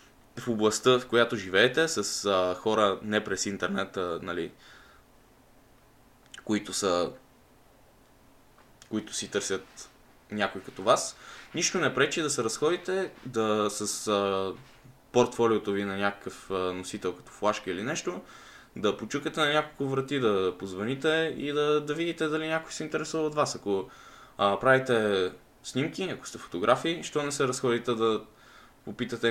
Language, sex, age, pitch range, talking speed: Bulgarian, male, 10-29, 100-135 Hz, 135 wpm